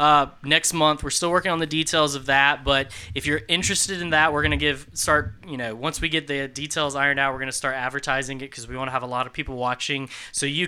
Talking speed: 260 wpm